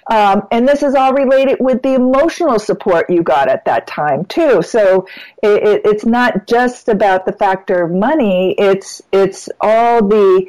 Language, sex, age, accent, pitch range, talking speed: English, female, 50-69, American, 190-235 Hz, 175 wpm